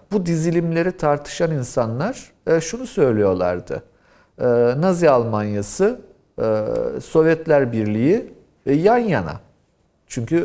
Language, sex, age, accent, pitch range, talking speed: Turkish, male, 50-69, native, 120-170 Hz, 75 wpm